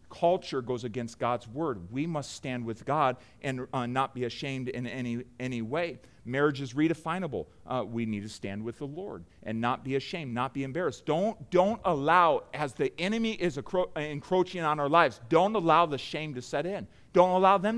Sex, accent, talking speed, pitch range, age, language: male, American, 200 wpm, 145-235 Hz, 40-59, English